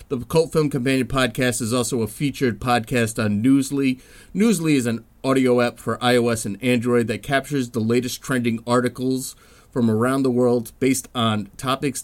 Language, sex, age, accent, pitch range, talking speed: English, male, 30-49, American, 115-145 Hz, 170 wpm